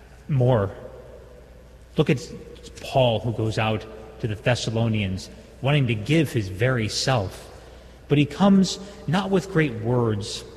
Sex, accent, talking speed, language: male, American, 130 wpm, English